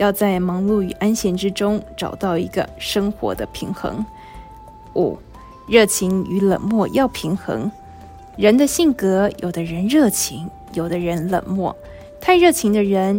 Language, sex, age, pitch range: Chinese, female, 20-39, 180-220 Hz